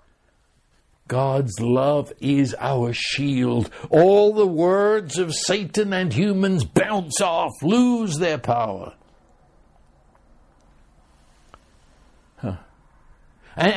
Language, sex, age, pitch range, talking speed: English, male, 60-79, 130-185 Hz, 80 wpm